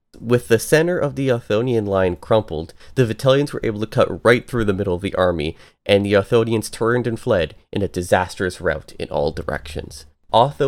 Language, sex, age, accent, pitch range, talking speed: English, male, 30-49, American, 90-120 Hz, 195 wpm